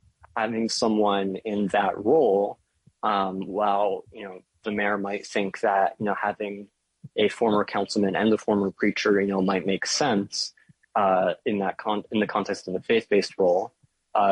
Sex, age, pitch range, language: male, 20-39, 95-105 Hz, English